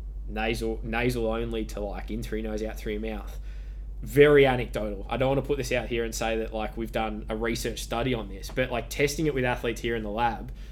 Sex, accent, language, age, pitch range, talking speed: male, Australian, English, 10-29, 110-130 Hz, 245 wpm